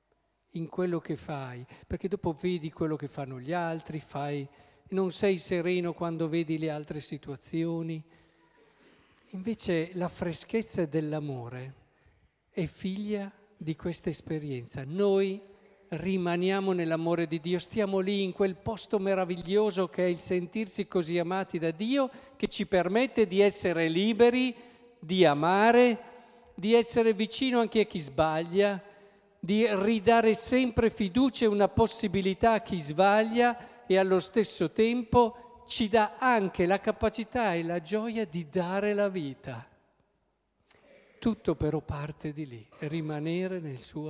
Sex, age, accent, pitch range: male, 50-69, native, 155-210 Hz